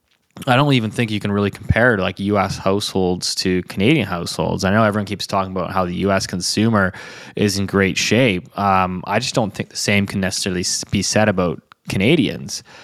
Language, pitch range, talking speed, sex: English, 95-115 Hz, 190 wpm, male